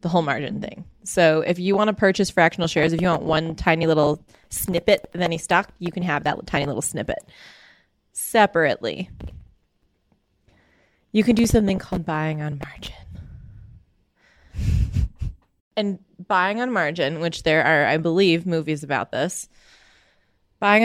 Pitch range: 145-180 Hz